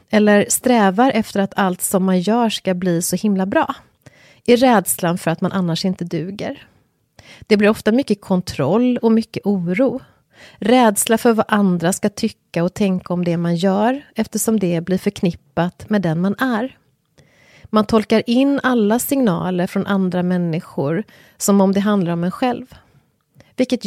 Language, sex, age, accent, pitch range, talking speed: English, female, 30-49, Swedish, 175-235 Hz, 165 wpm